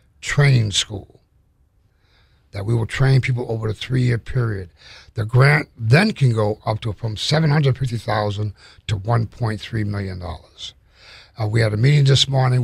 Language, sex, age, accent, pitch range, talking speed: English, male, 50-69, American, 105-120 Hz, 160 wpm